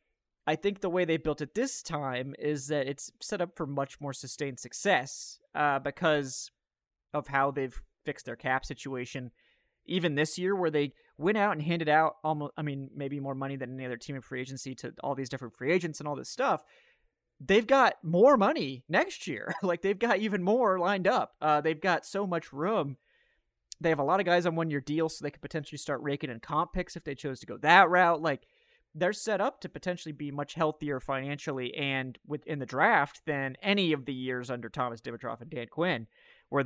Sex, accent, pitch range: male, American, 135-170 Hz